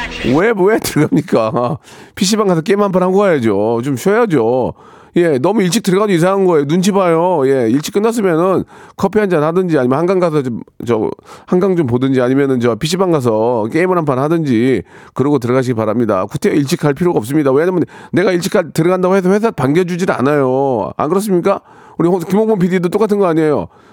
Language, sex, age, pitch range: Korean, male, 40-59, 150-195 Hz